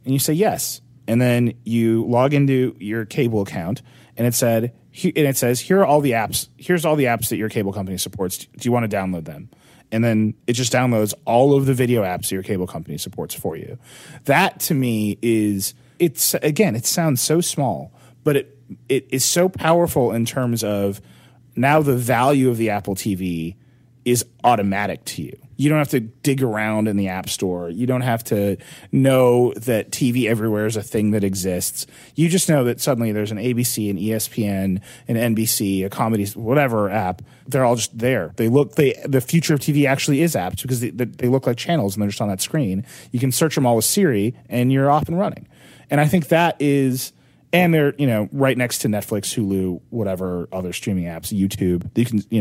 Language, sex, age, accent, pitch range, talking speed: English, male, 30-49, American, 105-135 Hz, 210 wpm